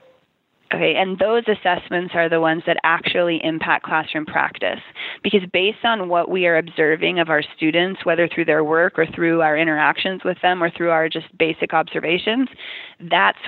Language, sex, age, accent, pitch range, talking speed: English, female, 20-39, American, 160-190 Hz, 175 wpm